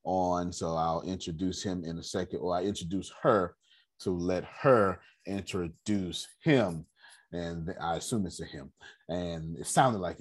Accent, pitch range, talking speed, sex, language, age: American, 85-110 Hz, 160 wpm, male, English, 30-49